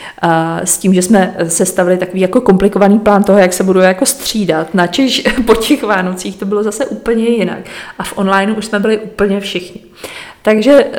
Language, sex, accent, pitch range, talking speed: Czech, female, native, 175-200 Hz, 190 wpm